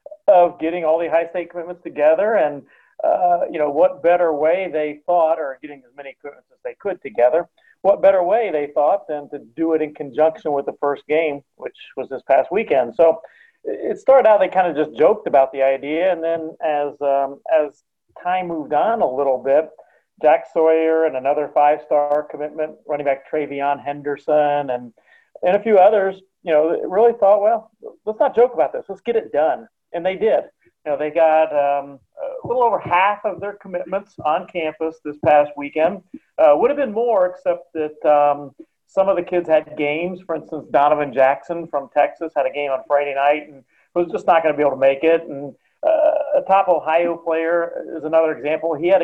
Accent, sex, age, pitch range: American, male, 40-59, 145-190 Hz